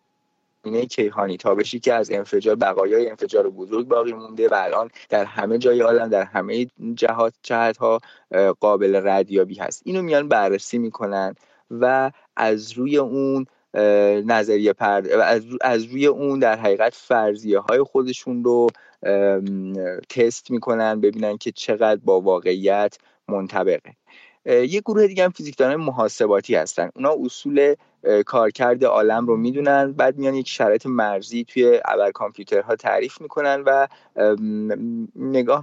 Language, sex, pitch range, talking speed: Persian, male, 110-150 Hz, 130 wpm